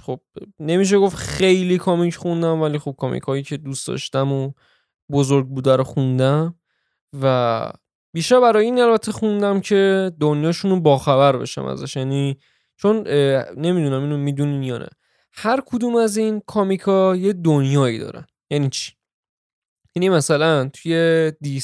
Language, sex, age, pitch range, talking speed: Persian, male, 20-39, 140-195 Hz, 140 wpm